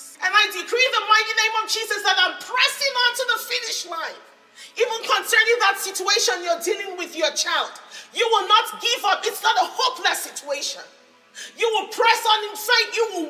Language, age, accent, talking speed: English, 40-59, Nigerian, 195 wpm